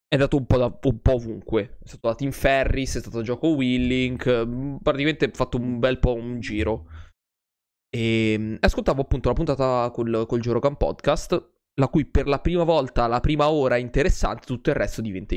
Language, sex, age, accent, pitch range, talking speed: Italian, male, 20-39, native, 110-140 Hz, 195 wpm